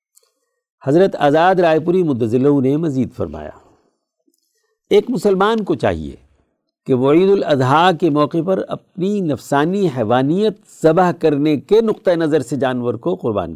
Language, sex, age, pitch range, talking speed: Urdu, male, 60-79, 120-185 Hz, 135 wpm